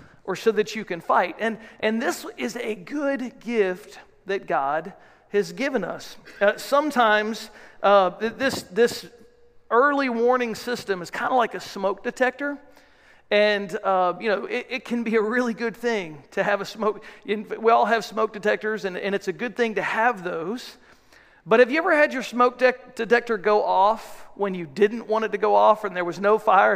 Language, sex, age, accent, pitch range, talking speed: English, male, 50-69, American, 205-245 Hz, 195 wpm